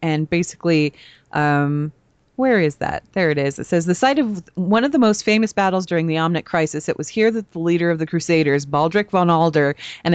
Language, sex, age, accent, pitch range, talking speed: English, female, 30-49, American, 150-190 Hz, 220 wpm